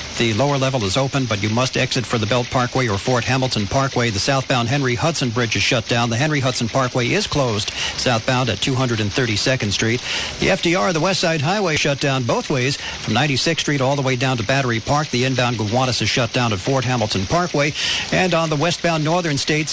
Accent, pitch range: American, 120-145 Hz